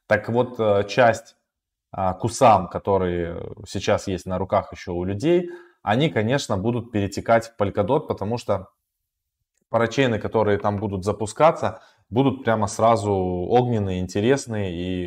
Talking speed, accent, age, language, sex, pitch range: 125 wpm, native, 20-39, Russian, male, 95-125 Hz